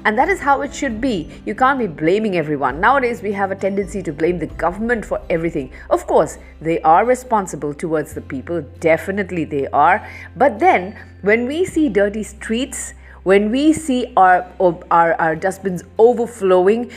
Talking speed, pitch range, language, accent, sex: 170 wpm, 175-250 Hz, English, Indian, female